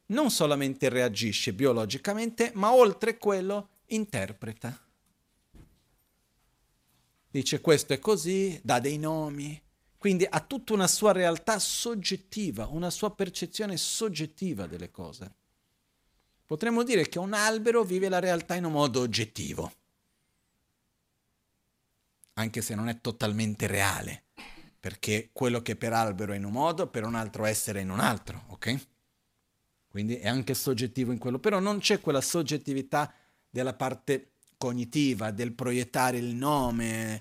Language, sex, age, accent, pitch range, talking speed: Italian, male, 50-69, native, 115-185 Hz, 135 wpm